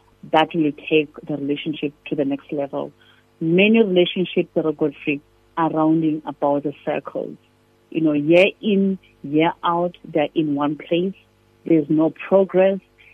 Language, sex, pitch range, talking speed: English, female, 150-185 Hz, 150 wpm